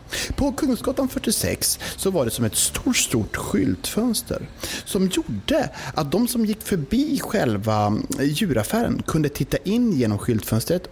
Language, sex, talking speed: Swedish, male, 135 wpm